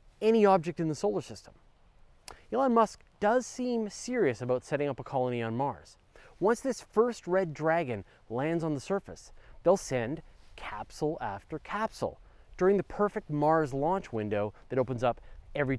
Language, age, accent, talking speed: English, 30-49, American, 160 wpm